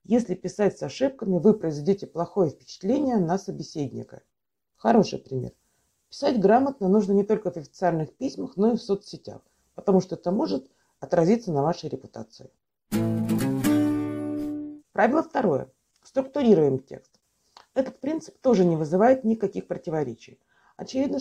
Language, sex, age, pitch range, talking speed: Russian, female, 50-69, 175-235 Hz, 125 wpm